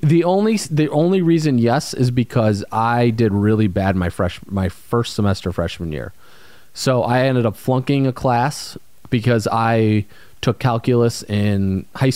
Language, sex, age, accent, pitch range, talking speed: English, male, 30-49, American, 100-130 Hz, 160 wpm